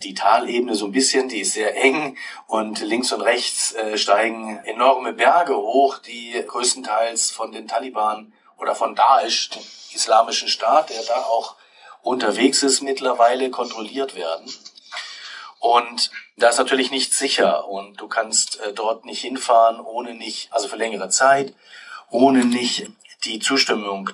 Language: German